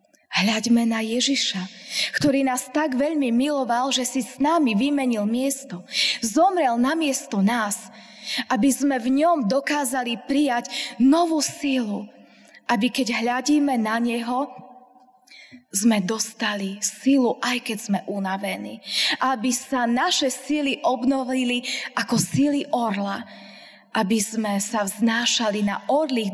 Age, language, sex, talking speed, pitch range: 20-39, Slovak, female, 120 wpm, 205-255 Hz